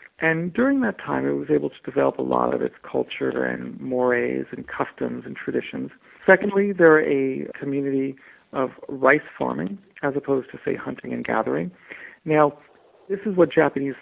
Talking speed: 165 wpm